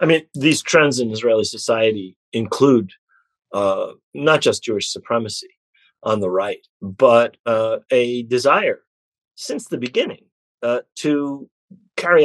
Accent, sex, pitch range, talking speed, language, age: American, male, 110-180 Hz, 125 wpm, English, 50-69